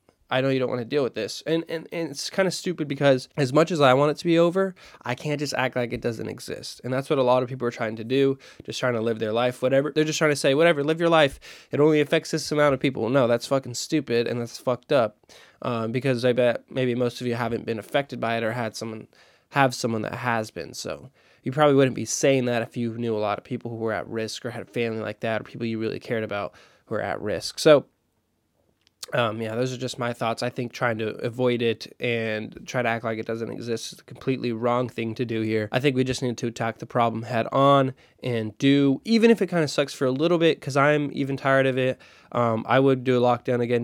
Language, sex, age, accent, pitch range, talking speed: English, male, 20-39, American, 115-140 Hz, 270 wpm